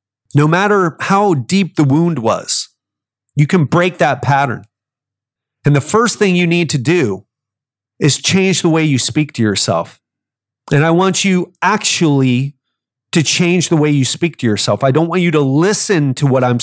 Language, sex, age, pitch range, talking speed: English, male, 30-49, 120-165 Hz, 180 wpm